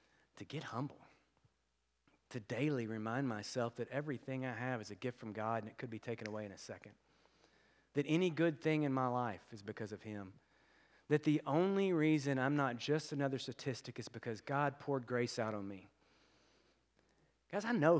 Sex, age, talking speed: male, 40-59, 185 wpm